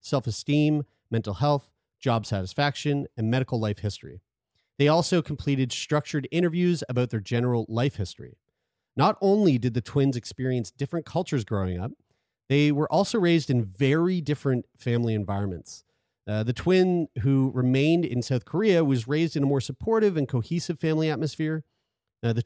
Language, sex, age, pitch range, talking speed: English, male, 30-49, 115-155 Hz, 155 wpm